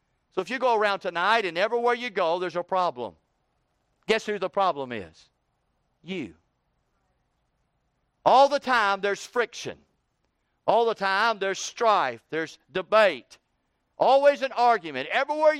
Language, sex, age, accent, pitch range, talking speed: English, male, 50-69, American, 155-205 Hz, 135 wpm